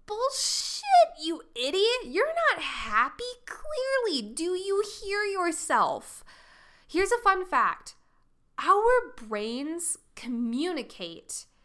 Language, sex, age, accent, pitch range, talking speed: English, female, 20-39, American, 200-300 Hz, 95 wpm